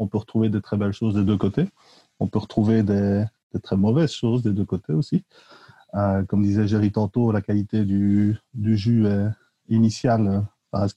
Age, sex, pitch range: 30-49, male, 100-125 Hz